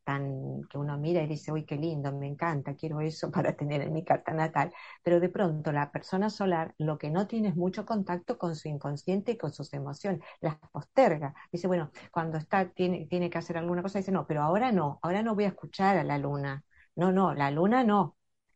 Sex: female